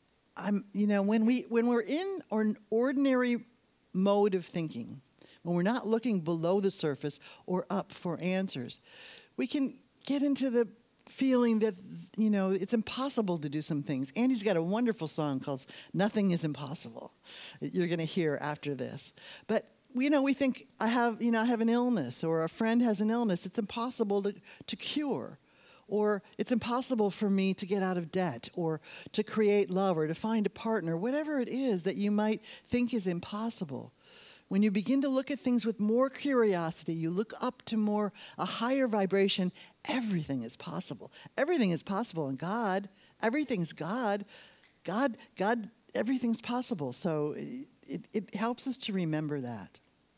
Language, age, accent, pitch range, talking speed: English, 50-69, American, 175-235 Hz, 175 wpm